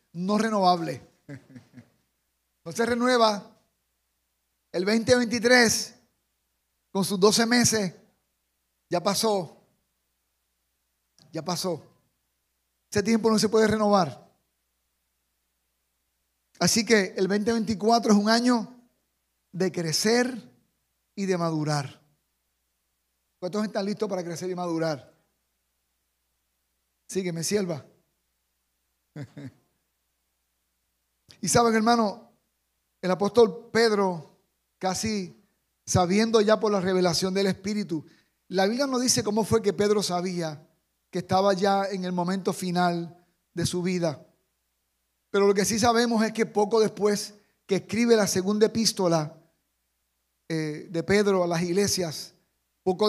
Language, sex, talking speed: Spanish, male, 110 wpm